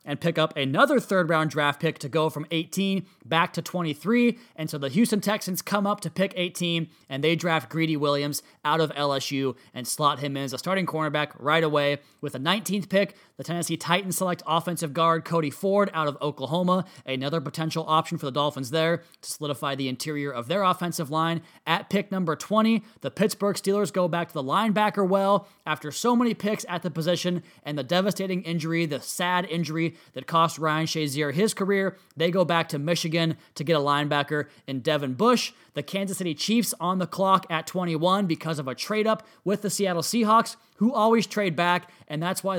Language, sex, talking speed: English, male, 200 wpm